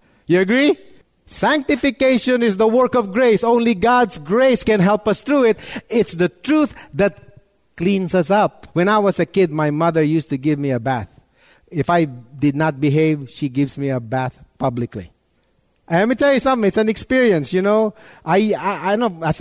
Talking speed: 195 wpm